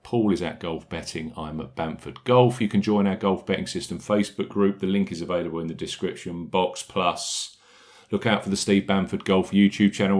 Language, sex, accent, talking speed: English, male, British, 210 wpm